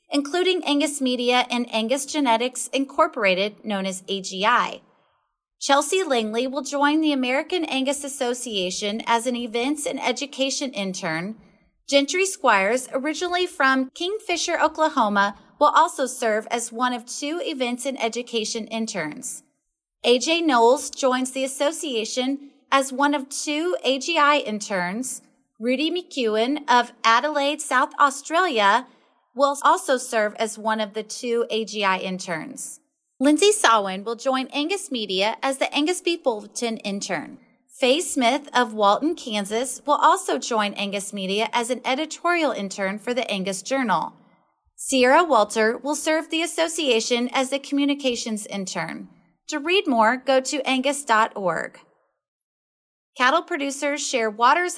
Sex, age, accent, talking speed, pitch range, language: female, 30-49, American, 130 wpm, 225-290 Hz, English